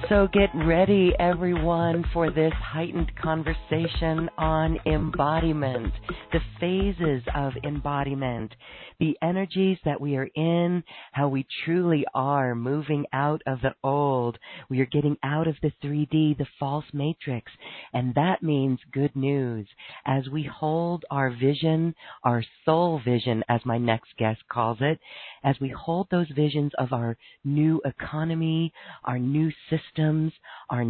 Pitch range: 130-165 Hz